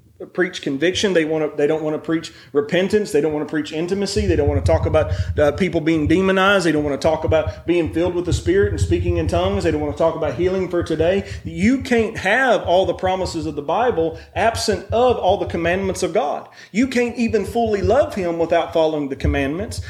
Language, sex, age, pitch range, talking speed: English, male, 30-49, 160-200 Hz, 230 wpm